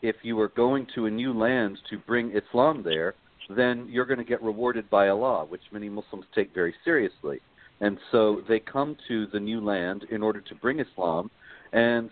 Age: 50-69